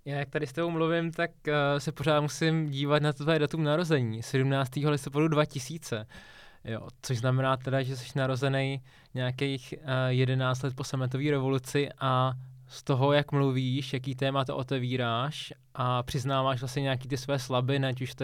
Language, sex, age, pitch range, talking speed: Czech, male, 20-39, 130-145 Hz, 170 wpm